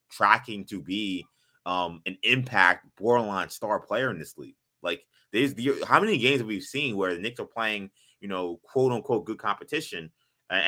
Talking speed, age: 180 wpm, 20-39